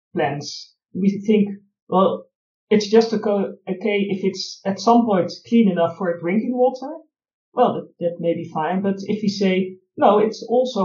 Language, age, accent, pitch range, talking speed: English, 50-69, Dutch, 180-220 Hz, 170 wpm